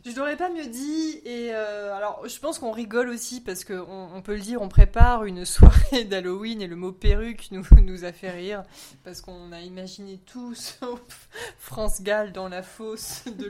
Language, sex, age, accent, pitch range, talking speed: French, female, 20-39, French, 190-250 Hz, 200 wpm